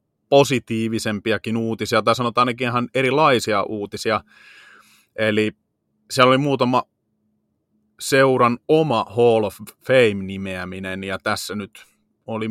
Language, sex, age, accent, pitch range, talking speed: Finnish, male, 30-49, native, 105-120 Hz, 105 wpm